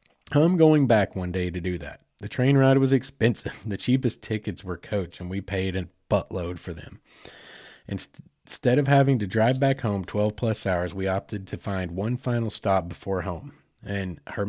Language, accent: English, American